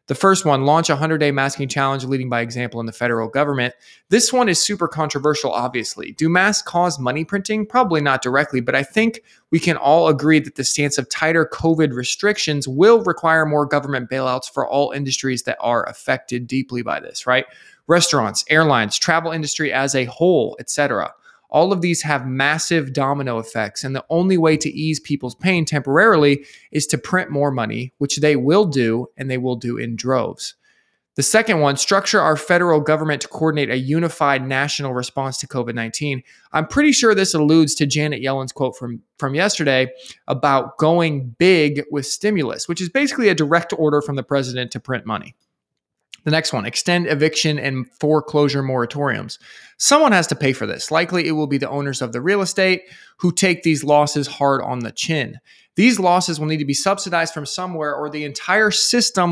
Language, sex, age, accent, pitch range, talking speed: English, male, 20-39, American, 135-170 Hz, 190 wpm